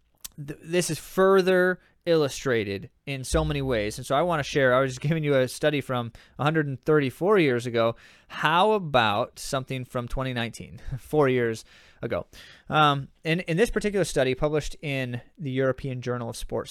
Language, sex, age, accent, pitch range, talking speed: English, male, 20-39, American, 115-145 Hz, 165 wpm